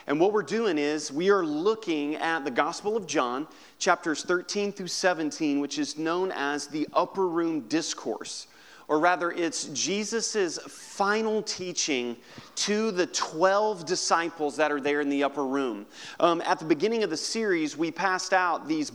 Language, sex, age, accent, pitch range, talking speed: English, male, 30-49, American, 155-210 Hz, 170 wpm